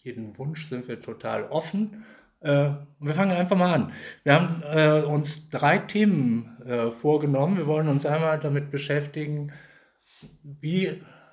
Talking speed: 125 wpm